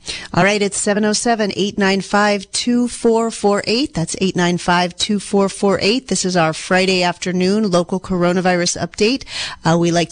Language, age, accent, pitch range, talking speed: English, 40-59, American, 175-225 Hz, 100 wpm